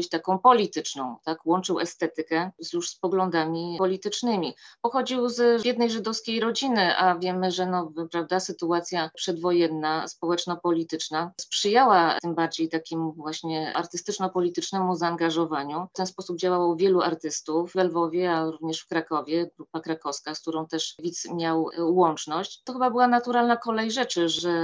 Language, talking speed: Polish, 135 wpm